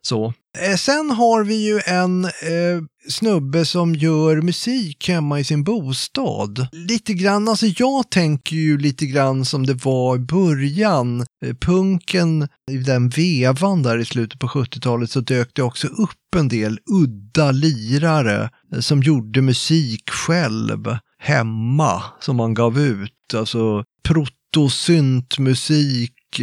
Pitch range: 125-170 Hz